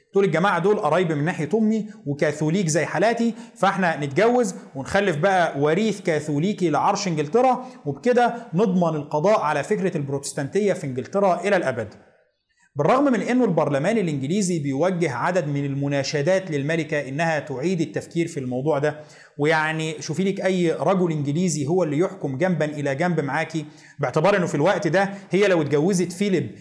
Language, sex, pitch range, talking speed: Arabic, male, 160-220 Hz, 150 wpm